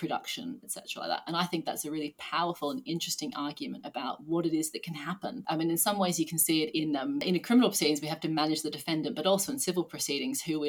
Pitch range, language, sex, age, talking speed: 155-180 Hz, English, female, 30-49, 275 wpm